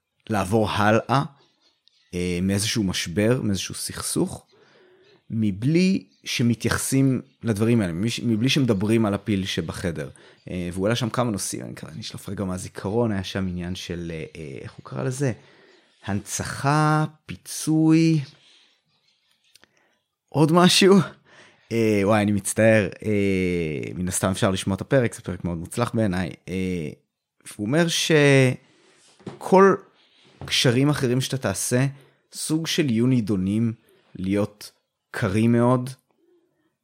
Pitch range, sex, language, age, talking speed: 95-130 Hz, male, Hebrew, 30-49, 110 wpm